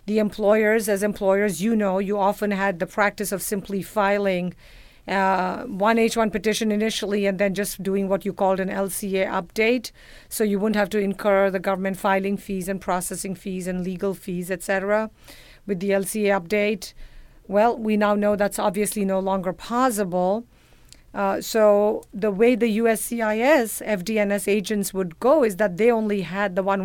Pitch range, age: 190-215 Hz, 50-69